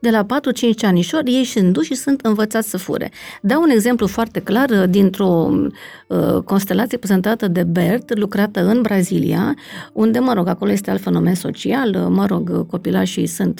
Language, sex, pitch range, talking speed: Romanian, female, 190-250 Hz, 160 wpm